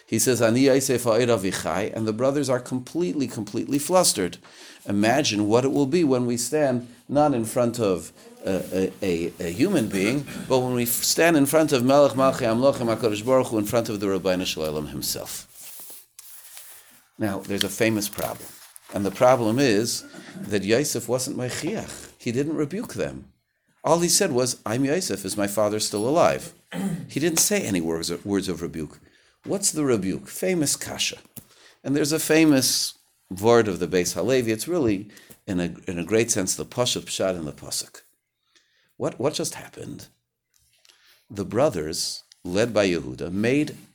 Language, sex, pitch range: English, male, 95-135 Hz